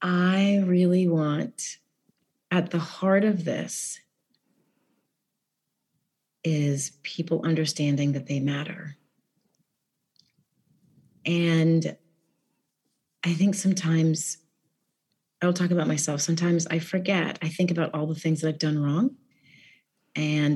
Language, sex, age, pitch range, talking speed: English, female, 30-49, 150-180 Hz, 105 wpm